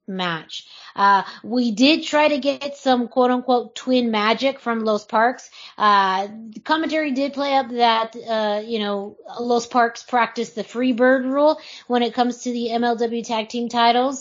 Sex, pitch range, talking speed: female, 205-245 Hz, 175 wpm